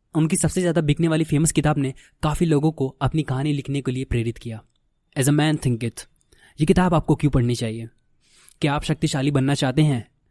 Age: 20-39